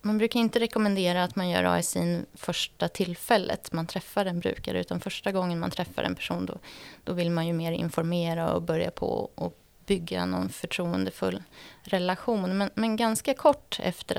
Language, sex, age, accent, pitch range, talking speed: Swedish, female, 20-39, native, 165-220 Hz, 175 wpm